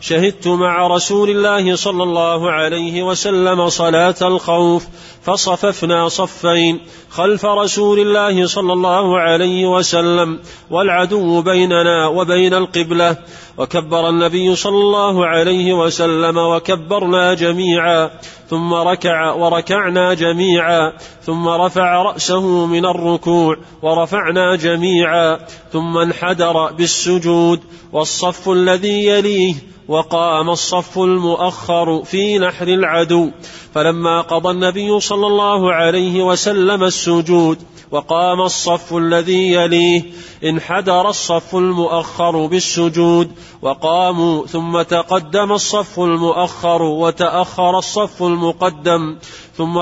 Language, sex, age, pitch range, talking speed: Arabic, male, 30-49, 170-185 Hz, 95 wpm